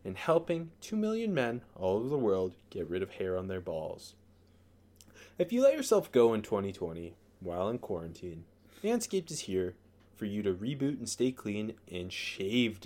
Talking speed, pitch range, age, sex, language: 175 wpm, 100-145 Hz, 20-39, male, English